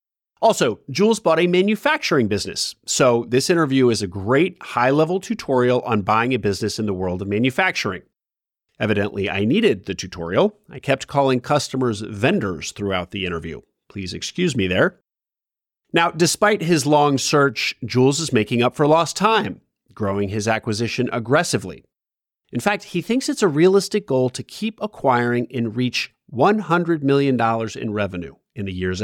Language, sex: English, male